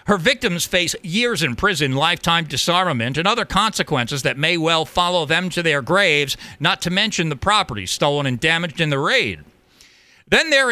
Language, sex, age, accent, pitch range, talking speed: English, male, 50-69, American, 150-200 Hz, 180 wpm